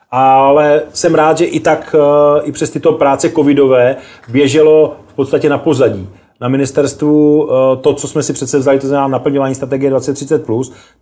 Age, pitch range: 30-49, 130-145 Hz